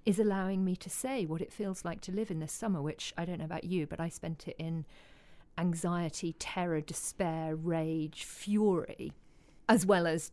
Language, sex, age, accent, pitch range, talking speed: English, female, 40-59, British, 160-195 Hz, 190 wpm